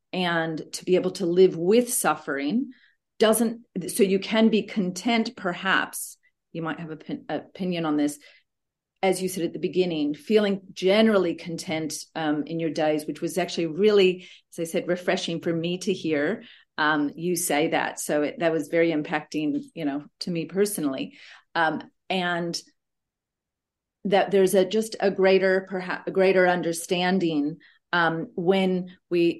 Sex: female